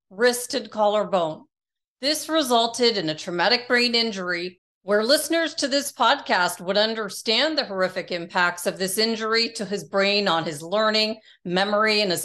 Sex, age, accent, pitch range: female, 40-59, American, 190-245 Hz